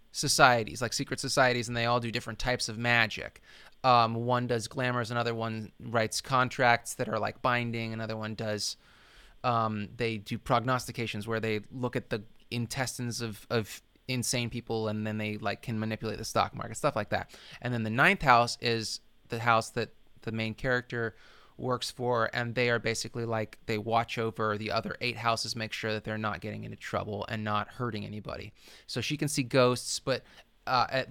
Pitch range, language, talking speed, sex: 110-140 Hz, English, 190 wpm, male